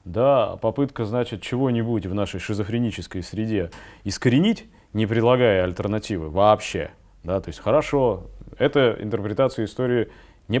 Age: 20-39